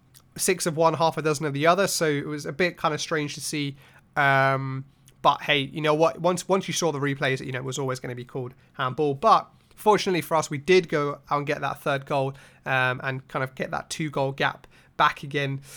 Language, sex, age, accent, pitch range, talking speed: English, male, 20-39, British, 135-165 Hz, 245 wpm